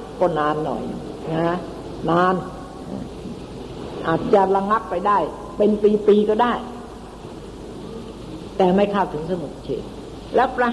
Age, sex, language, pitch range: 60-79, female, Thai, 180-220 Hz